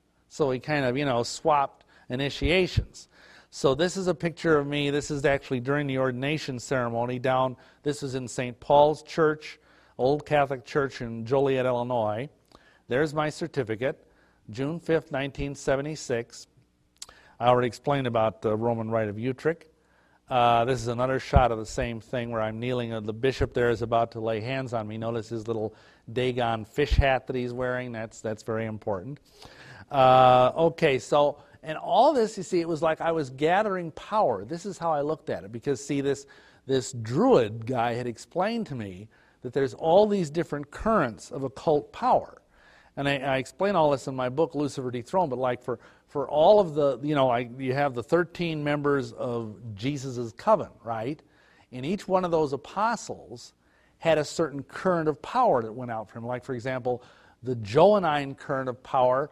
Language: English